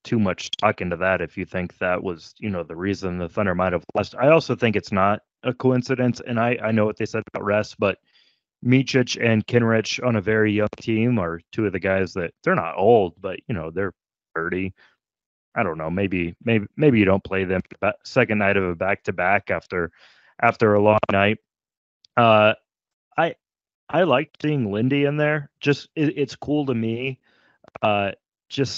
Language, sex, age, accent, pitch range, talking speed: English, male, 30-49, American, 100-130 Hz, 200 wpm